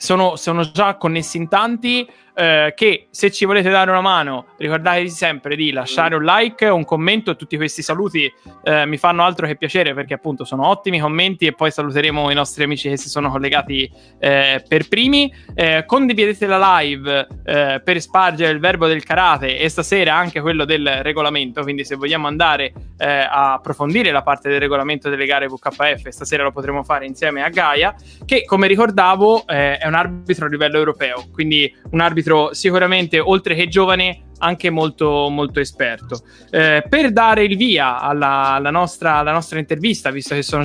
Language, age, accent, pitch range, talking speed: Italian, 20-39, native, 145-185 Hz, 180 wpm